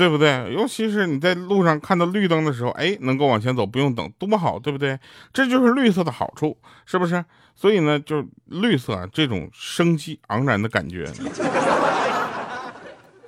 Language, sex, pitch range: Chinese, male, 95-140 Hz